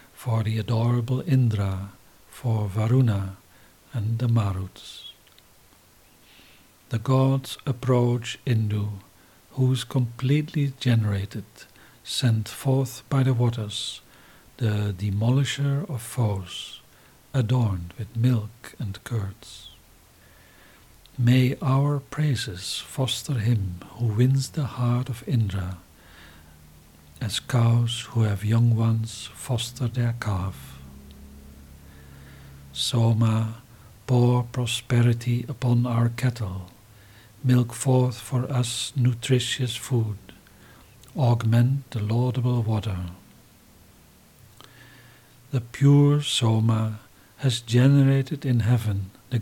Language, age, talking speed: English, 60-79, 90 wpm